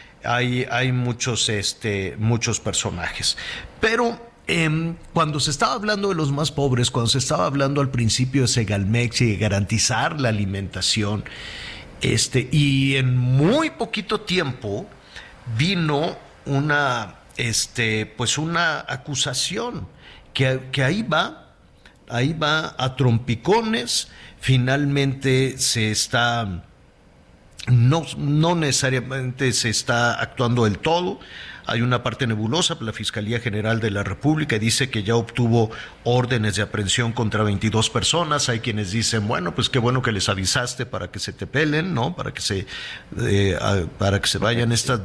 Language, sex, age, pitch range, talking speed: Spanish, male, 50-69, 110-140 Hz, 140 wpm